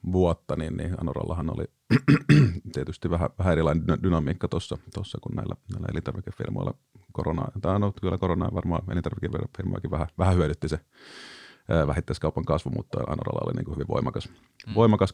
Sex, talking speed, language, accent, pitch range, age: male, 130 wpm, Finnish, native, 85-120 Hz, 30-49